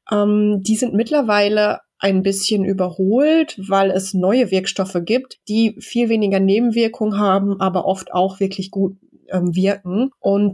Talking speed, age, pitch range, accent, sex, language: 140 wpm, 20-39, 180-210 Hz, German, female, German